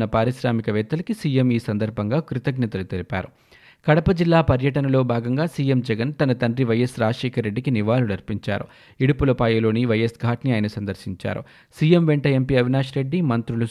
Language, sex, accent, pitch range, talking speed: Telugu, male, native, 115-140 Hz, 130 wpm